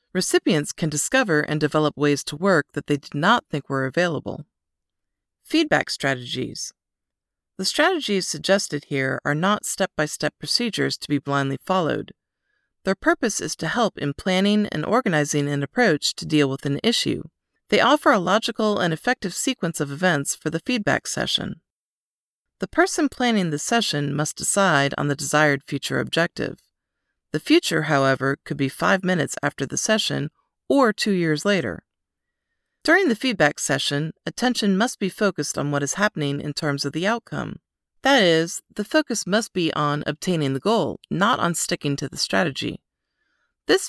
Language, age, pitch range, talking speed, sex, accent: English, 40-59, 145-205 Hz, 160 wpm, female, American